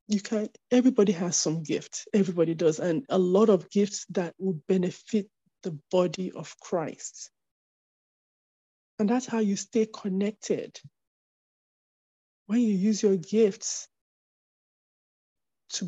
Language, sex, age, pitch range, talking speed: English, male, 20-39, 195-235 Hz, 120 wpm